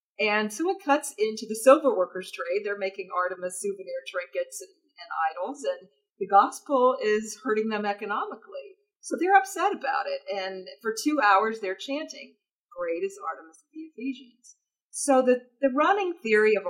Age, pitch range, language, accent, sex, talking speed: 40-59, 185-275 Hz, English, American, female, 170 wpm